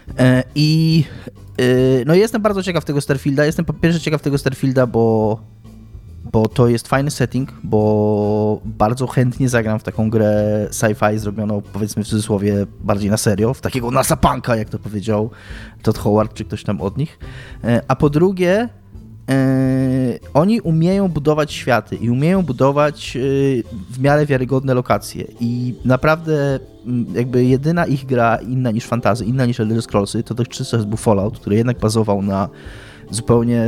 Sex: male